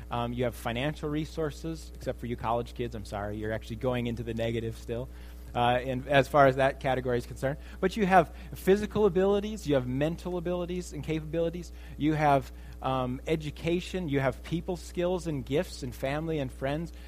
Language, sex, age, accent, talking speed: English, male, 30-49, American, 185 wpm